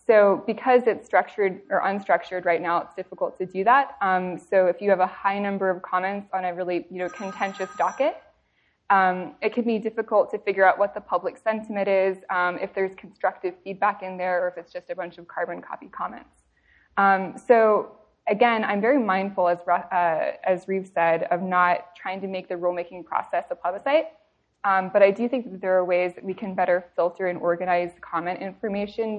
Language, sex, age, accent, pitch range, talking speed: English, female, 20-39, American, 180-215 Hz, 205 wpm